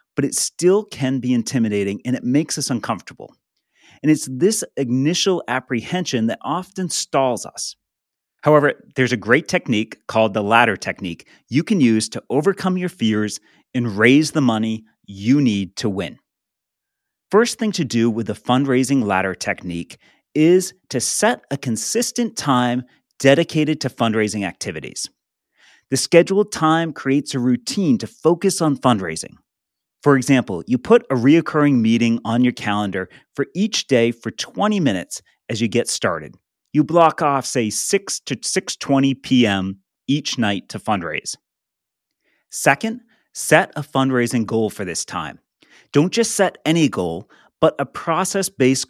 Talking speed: 150 wpm